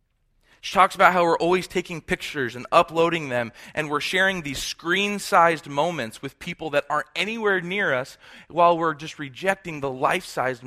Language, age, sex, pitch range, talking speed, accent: English, 20-39, male, 130-170 Hz, 170 wpm, American